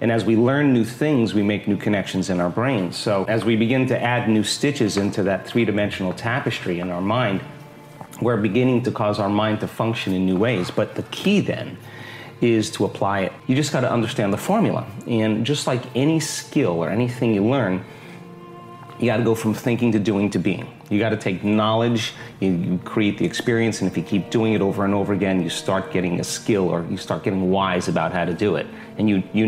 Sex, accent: male, American